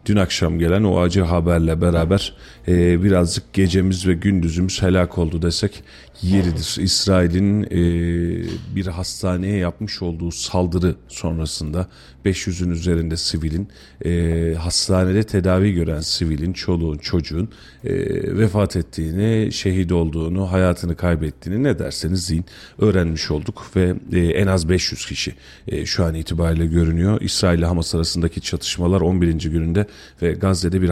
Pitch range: 85-95 Hz